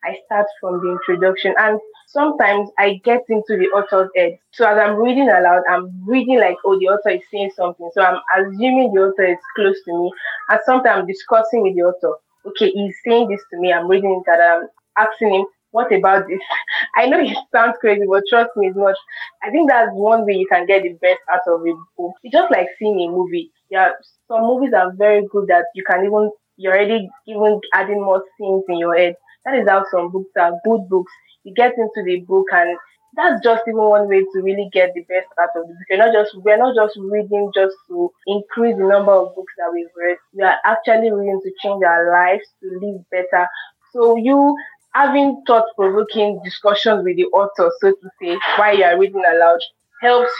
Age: 20-39